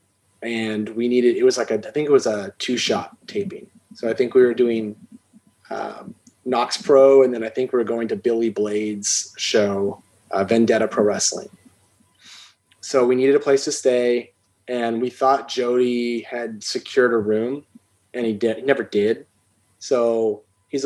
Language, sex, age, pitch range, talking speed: English, male, 30-49, 115-145 Hz, 175 wpm